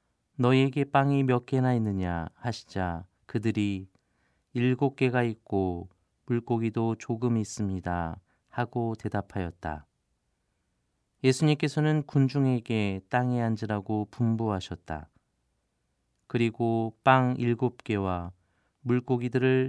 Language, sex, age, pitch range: Korean, male, 40-59, 95-125 Hz